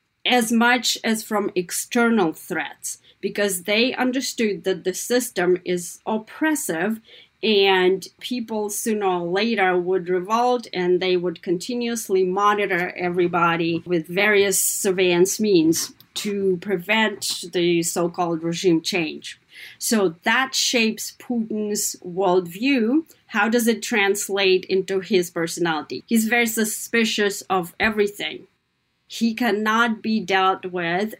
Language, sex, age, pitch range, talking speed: English, female, 30-49, 185-240 Hz, 115 wpm